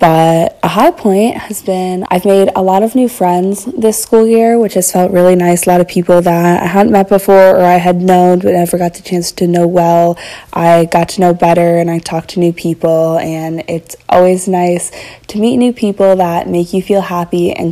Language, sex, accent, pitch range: English, female, American, 170-195 Hz